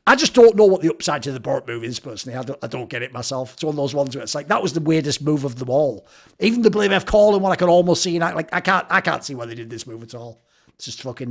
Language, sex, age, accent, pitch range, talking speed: English, male, 50-69, British, 150-235 Hz, 340 wpm